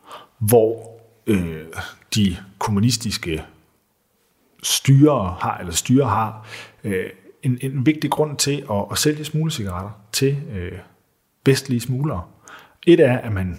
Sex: male